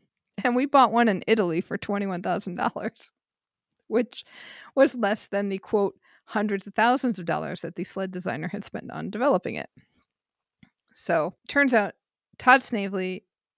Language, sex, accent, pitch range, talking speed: English, female, American, 185-235 Hz, 160 wpm